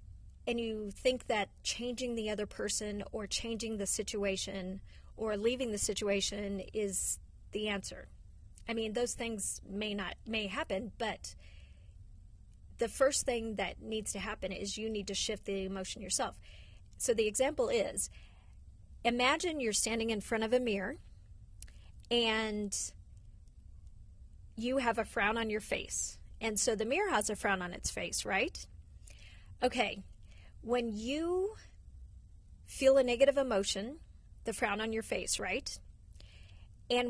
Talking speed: 140 wpm